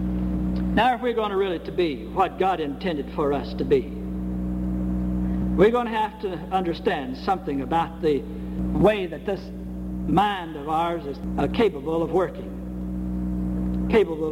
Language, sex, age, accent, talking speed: English, male, 60-79, American, 145 wpm